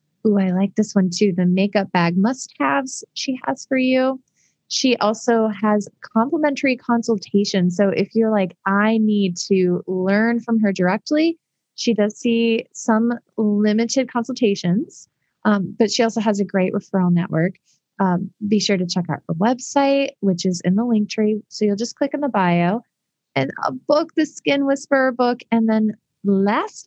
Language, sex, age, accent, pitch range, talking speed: English, female, 20-39, American, 185-235 Hz, 170 wpm